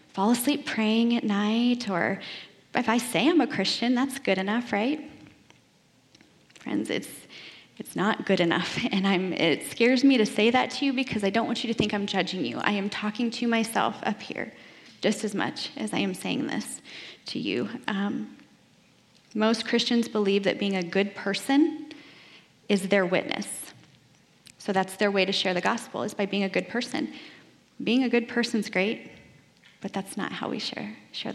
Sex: female